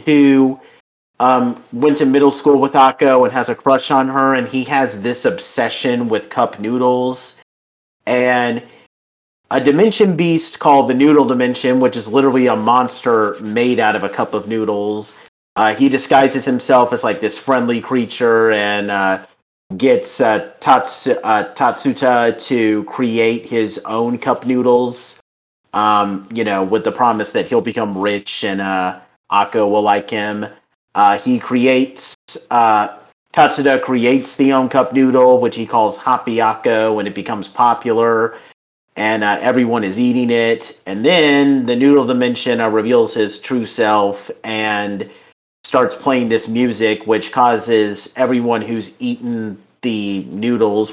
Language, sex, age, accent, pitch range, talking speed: English, male, 40-59, American, 105-130 Hz, 150 wpm